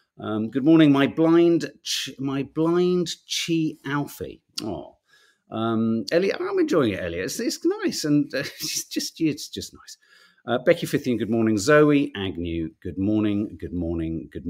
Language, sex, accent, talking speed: English, male, British, 160 wpm